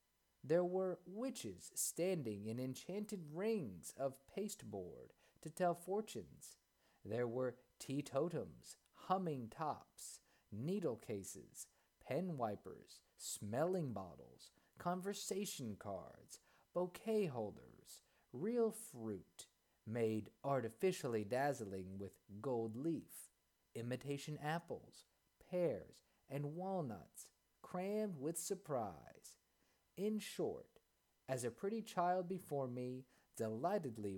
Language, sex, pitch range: English, male, 120-190 Hz